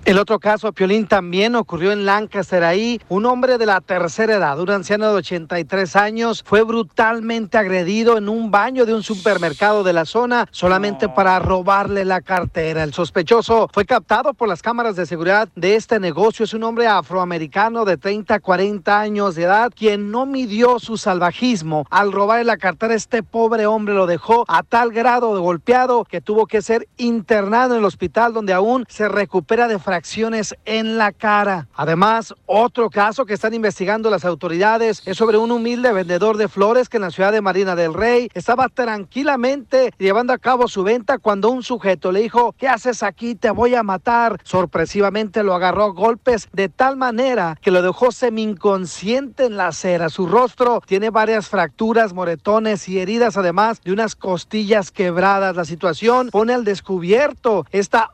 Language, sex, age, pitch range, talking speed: Spanish, male, 40-59, 190-230 Hz, 175 wpm